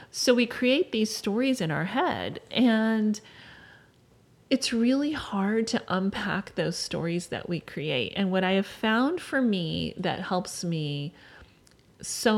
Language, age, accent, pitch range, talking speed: English, 30-49, American, 170-225 Hz, 145 wpm